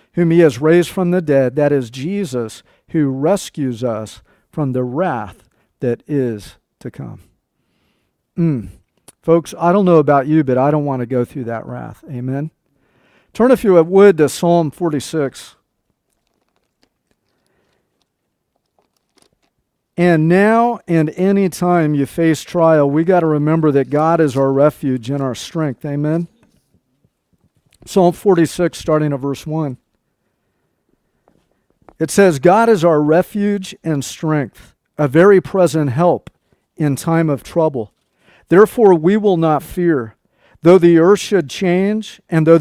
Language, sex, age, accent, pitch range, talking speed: English, male, 50-69, American, 145-180 Hz, 140 wpm